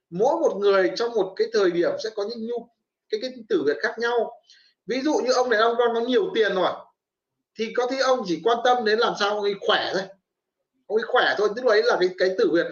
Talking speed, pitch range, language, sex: 260 wpm, 215-345 Hz, Vietnamese, male